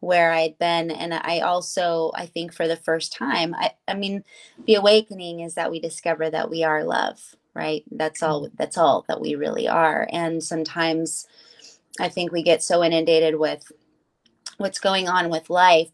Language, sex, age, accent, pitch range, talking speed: English, female, 20-39, American, 160-185 Hz, 180 wpm